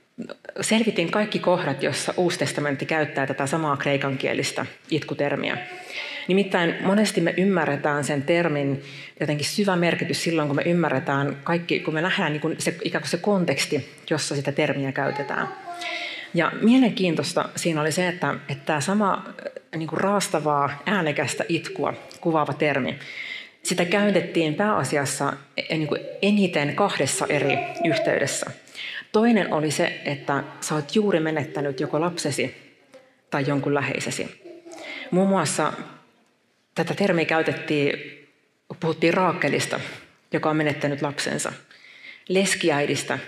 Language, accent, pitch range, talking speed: Finnish, native, 145-185 Hz, 115 wpm